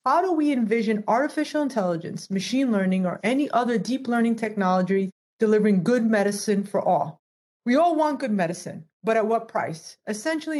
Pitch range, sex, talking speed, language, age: 200-265 Hz, female, 165 wpm, English, 30-49